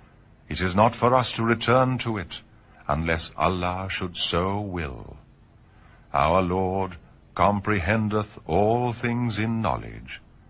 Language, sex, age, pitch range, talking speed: Urdu, male, 50-69, 85-115 Hz, 120 wpm